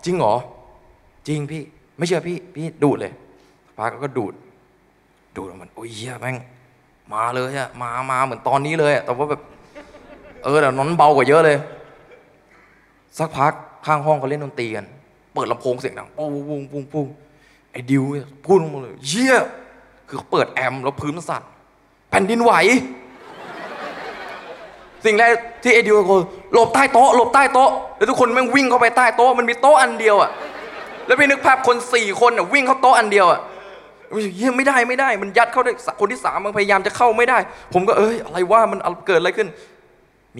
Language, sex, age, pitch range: Thai, male, 20-39, 140-235 Hz